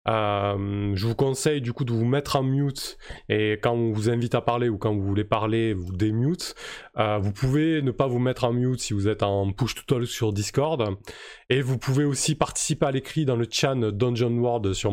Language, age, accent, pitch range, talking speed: French, 20-39, French, 100-125 Hz, 220 wpm